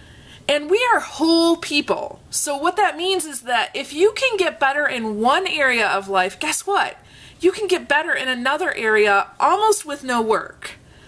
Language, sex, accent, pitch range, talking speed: English, female, American, 230-335 Hz, 185 wpm